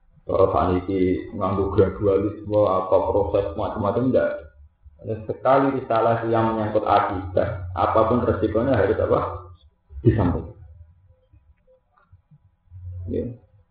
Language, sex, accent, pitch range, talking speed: Indonesian, male, native, 90-125 Hz, 90 wpm